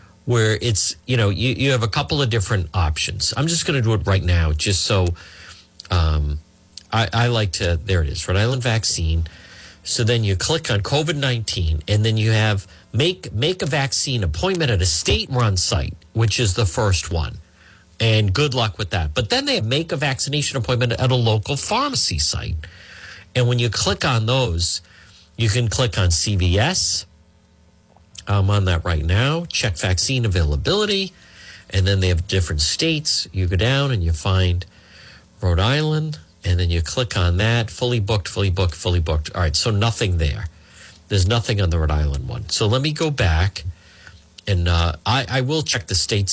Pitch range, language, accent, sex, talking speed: 90-120 Hz, English, American, male, 190 wpm